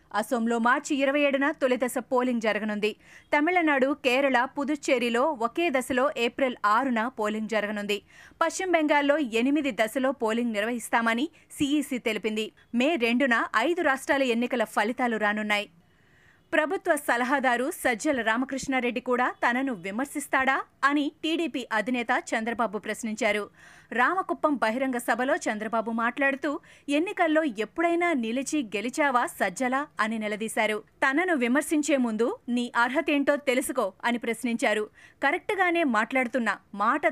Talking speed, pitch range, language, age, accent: 110 wpm, 230-290 Hz, Telugu, 30-49, native